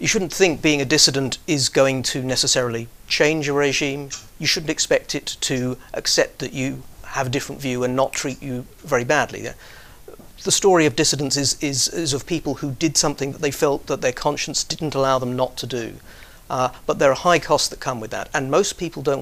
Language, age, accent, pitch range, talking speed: English, 40-59, British, 125-150 Hz, 215 wpm